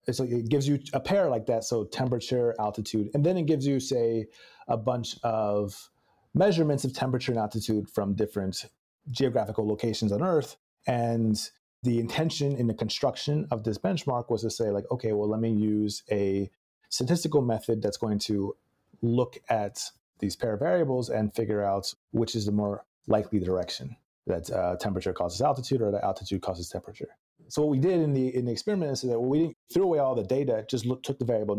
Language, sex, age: English, male, 30-49